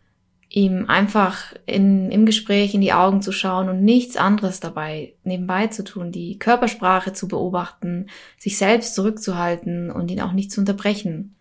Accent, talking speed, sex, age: German, 155 wpm, female, 20-39